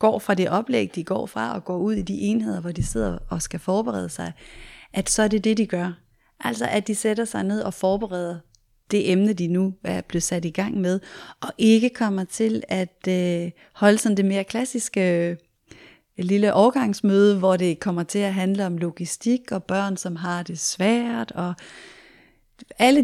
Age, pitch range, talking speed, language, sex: 30-49, 175-220 Hz, 190 wpm, Danish, female